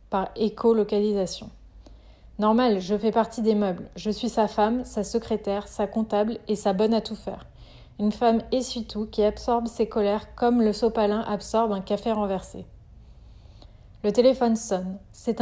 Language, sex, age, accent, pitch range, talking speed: French, female, 30-49, French, 205-230 Hz, 160 wpm